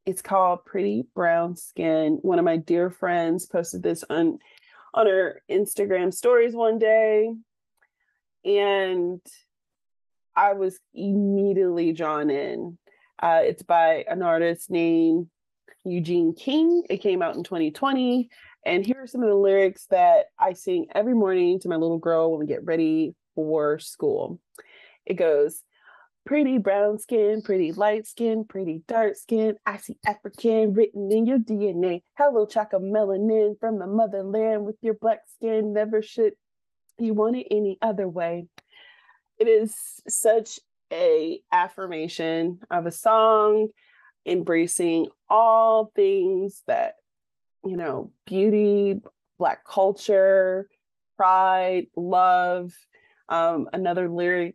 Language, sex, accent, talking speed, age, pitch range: English, female, American, 130 wpm, 30-49, 175-225 Hz